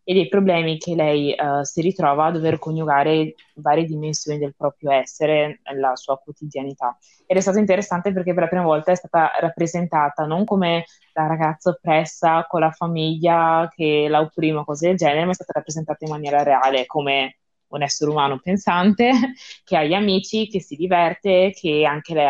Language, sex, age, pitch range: Italian, female, 20-39, 145-170 Hz